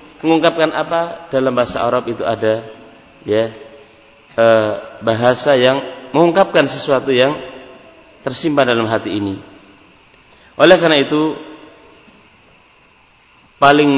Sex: male